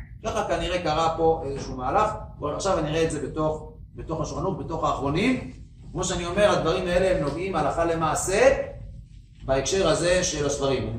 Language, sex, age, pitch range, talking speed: Hebrew, male, 40-59, 135-175 Hz, 160 wpm